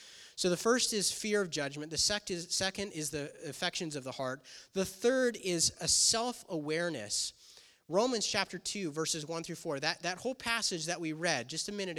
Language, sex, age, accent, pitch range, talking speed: English, male, 30-49, American, 145-190 Hz, 200 wpm